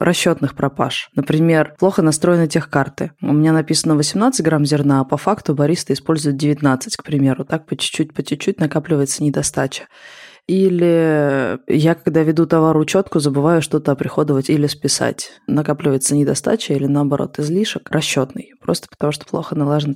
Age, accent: 20-39, native